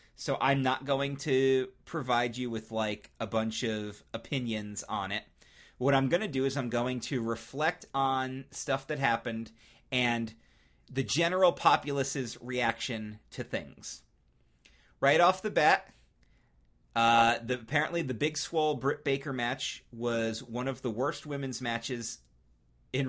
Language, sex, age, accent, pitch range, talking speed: English, male, 30-49, American, 115-140 Hz, 145 wpm